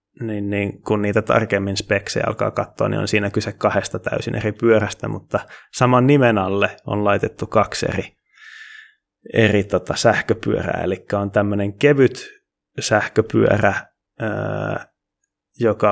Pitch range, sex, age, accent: 100-125 Hz, male, 20-39, native